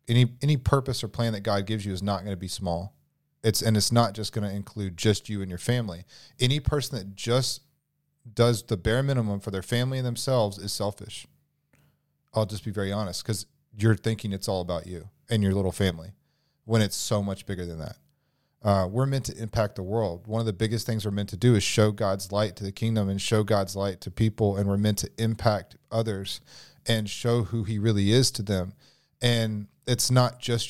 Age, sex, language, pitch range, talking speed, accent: 40-59, male, English, 105-140 Hz, 220 wpm, American